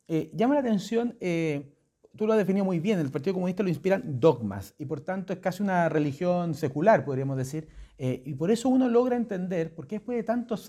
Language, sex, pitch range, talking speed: Spanish, male, 160-215 Hz, 220 wpm